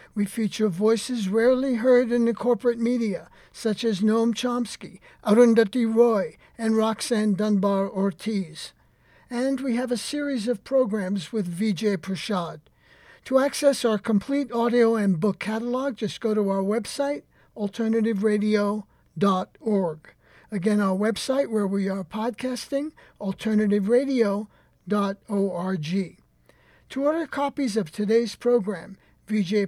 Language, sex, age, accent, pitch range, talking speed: English, male, 60-79, American, 200-235 Hz, 115 wpm